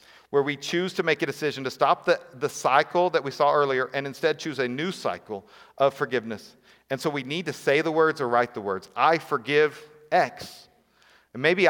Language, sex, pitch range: English, male, 130-175 Hz